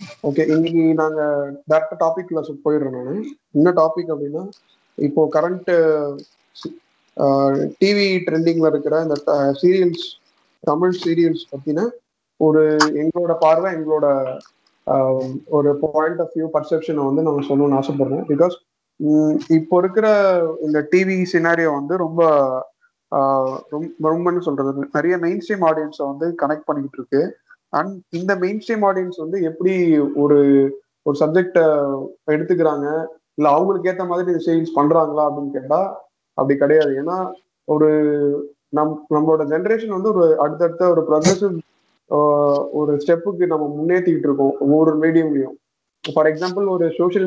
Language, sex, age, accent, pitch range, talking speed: Tamil, male, 30-49, native, 150-175 Hz, 110 wpm